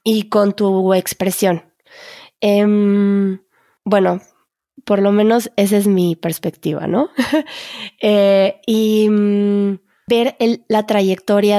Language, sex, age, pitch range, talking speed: Spanish, female, 20-39, 190-225 Hz, 110 wpm